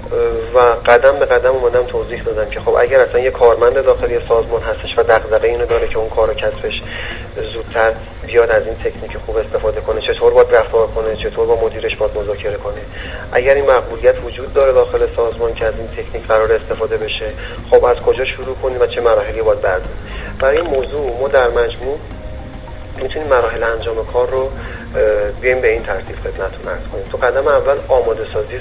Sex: male